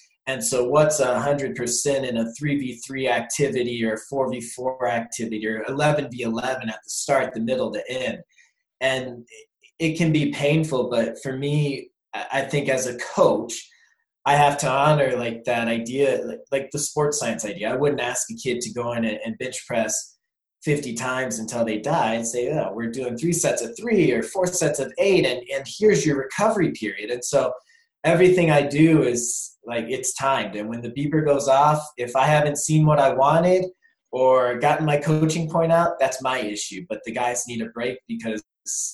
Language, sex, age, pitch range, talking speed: English, male, 20-39, 120-150 Hz, 195 wpm